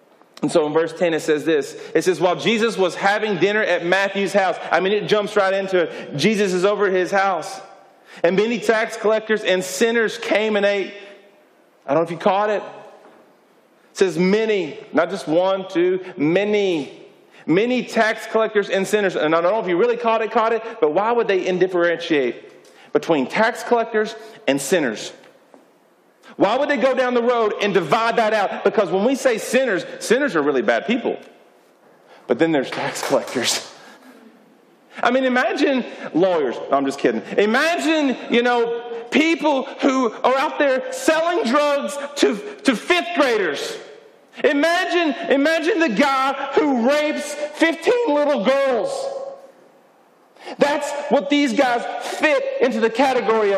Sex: male